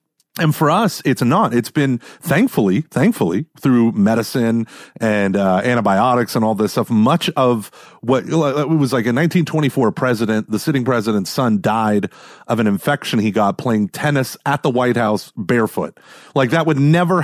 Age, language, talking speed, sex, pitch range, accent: 30-49, English, 165 wpm, male, 115-160 Hz, American